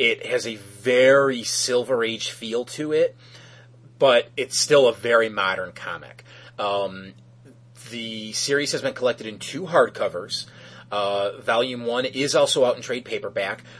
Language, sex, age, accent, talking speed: English, male, 30-49, American, 145 wpm